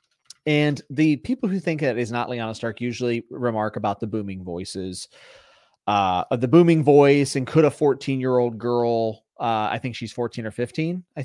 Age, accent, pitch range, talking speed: 30-49, American, 105-130 Hz, 175 wpm